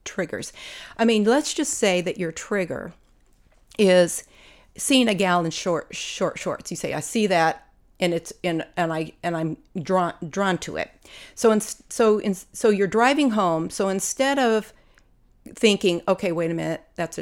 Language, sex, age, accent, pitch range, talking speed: English, female, 40-59, American, 165-220 Hz, 180 wpm